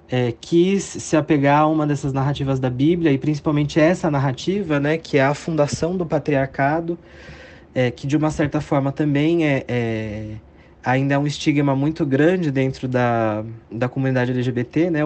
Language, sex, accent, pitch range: Portuguese, male, Brazilian, 120-150 Hz